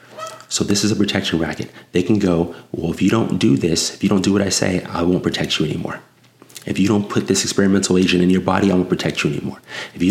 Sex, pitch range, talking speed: male, 90-105 Hz, 260 wpm